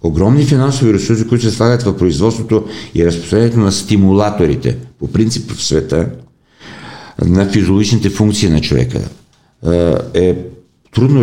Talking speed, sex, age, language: 125 wpm, male, 50-69, Bulgarian